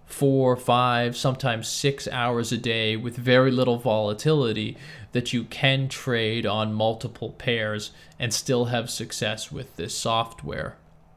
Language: English